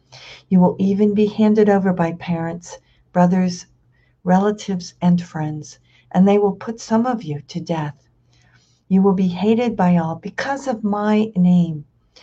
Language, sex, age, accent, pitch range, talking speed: English, female, 60-79, American, 155-185 Hz, 150 wpm